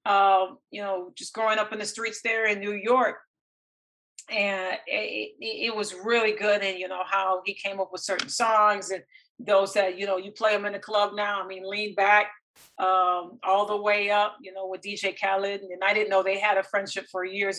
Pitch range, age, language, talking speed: 190-210 Hz, 40-59, English, 225 wpm